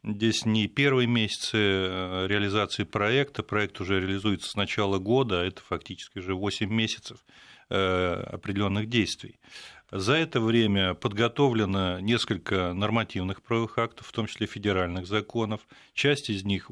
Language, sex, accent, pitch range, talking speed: Russian, male, native, 100-120 Hz, 130 wpm